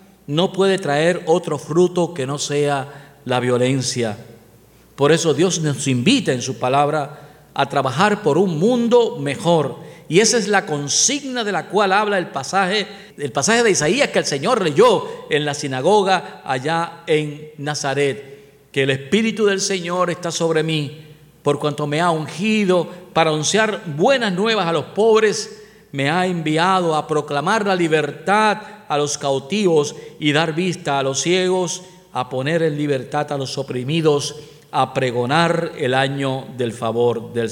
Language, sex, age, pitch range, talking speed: Spanish, male, 50-69, 135-190 Hz, 160 wpm